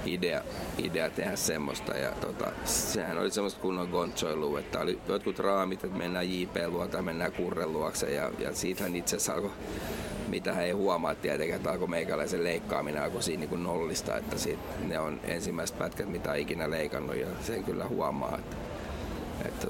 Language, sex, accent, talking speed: Finnish, male, native, 170 wpm